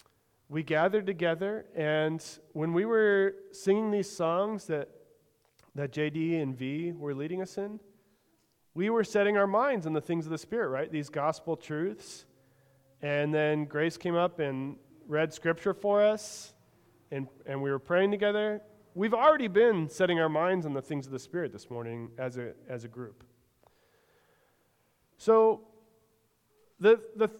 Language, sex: English, male